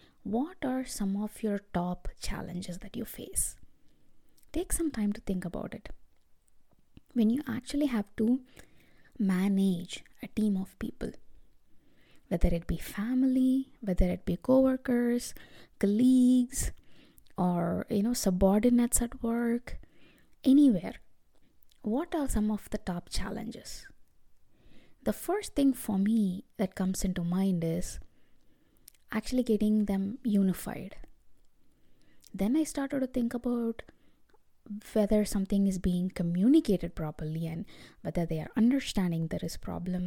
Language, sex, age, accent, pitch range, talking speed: English, female, 20-39, Indian, 185-245 Hz, 125 wpm